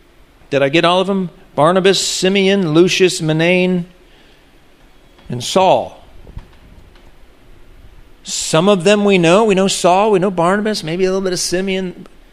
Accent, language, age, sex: American, English, 40-59, male